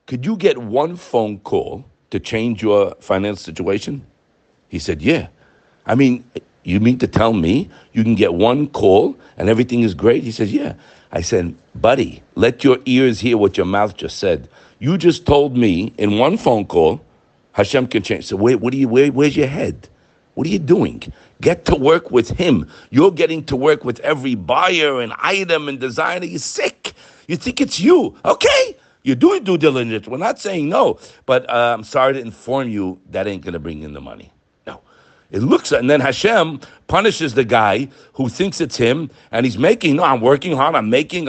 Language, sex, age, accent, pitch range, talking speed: English, male, 50-69, American, 115-165 Hz, 200 wpm